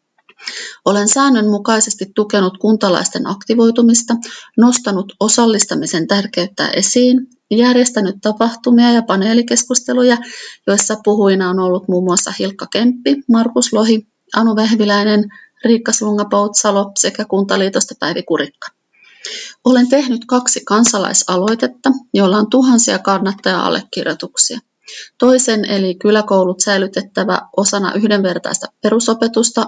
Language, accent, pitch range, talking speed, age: Finnish, native, 195-235 Hz, 95 wpm, 30-49